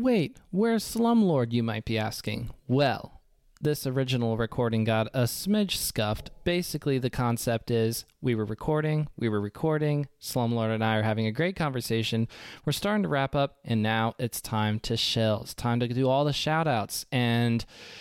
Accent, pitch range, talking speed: American, 115-140 Hz, 175 wpm